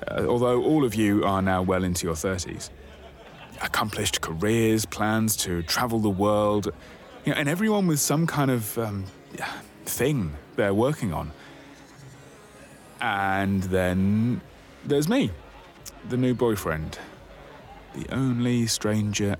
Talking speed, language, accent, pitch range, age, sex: 120 wpm, English, British, 80-120 Hz, 30-49, male